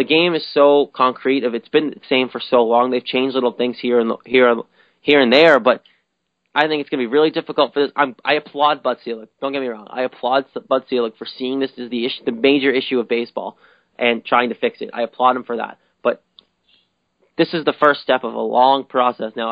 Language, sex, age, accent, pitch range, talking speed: English, male, 20-39, American, 120-140 Hz, 250 wpm